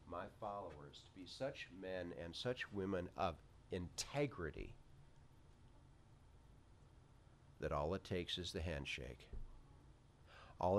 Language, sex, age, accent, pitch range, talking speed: English, male, 50-69, American, 85-115 Hz, 105 wpm